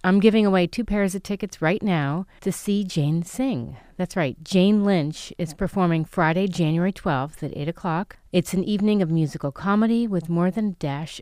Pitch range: 150-195 Hz